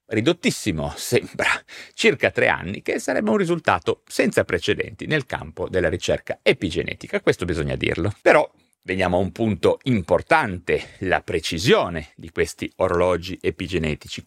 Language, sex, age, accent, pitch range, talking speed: Italian, male, 30-49, native, 100-165 Hz, 130 wpm